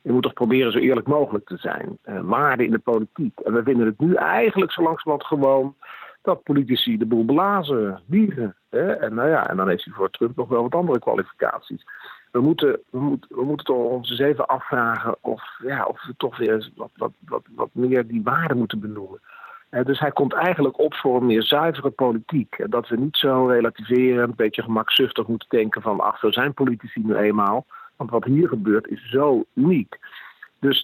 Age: 50-69